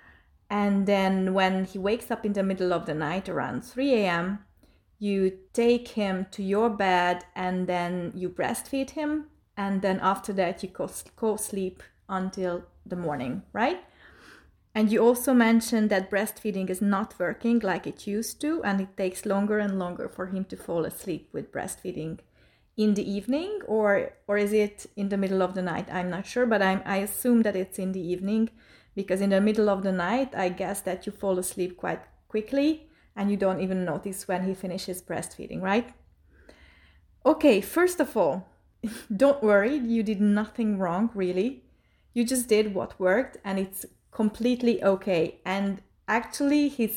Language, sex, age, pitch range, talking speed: English, female, 30-49, 185-220 Hz, 170 wpm